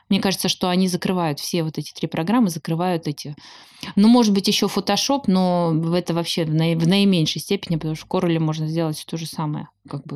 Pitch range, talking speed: 165-195 Hz, 200 wpm